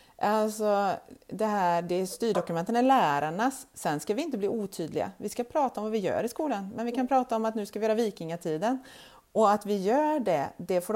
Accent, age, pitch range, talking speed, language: native, 30-49, 175-220 Hz, 230 wpm, Swedish